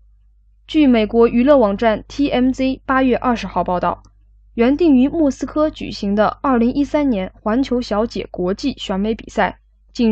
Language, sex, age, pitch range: Chinese, female, 10-29, 190-260 Hz